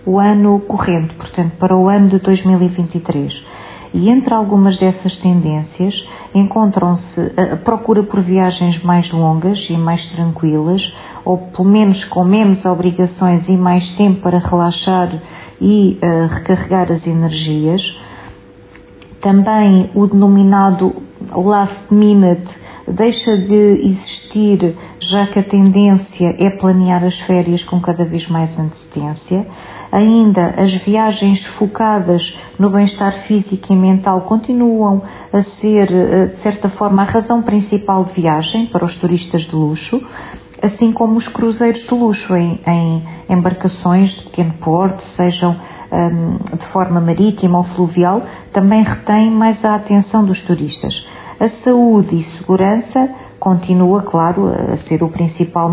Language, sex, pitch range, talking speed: Portuguese, female, 175-205 Hz, 130 wpm